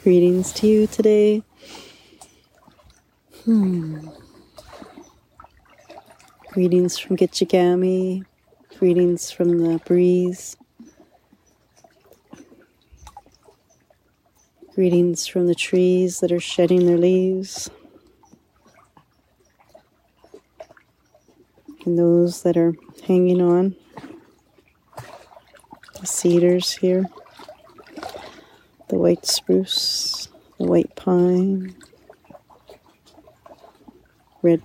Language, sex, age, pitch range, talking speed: English, female, 40-59, 175-200 Hz, 65 wpm